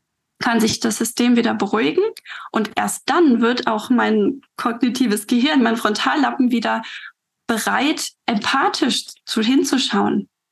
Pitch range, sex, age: 230-270 Hz, female, 20-39